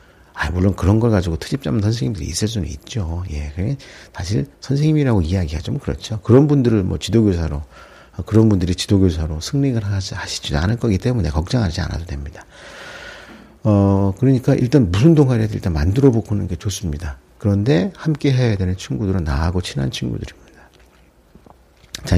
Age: 50-69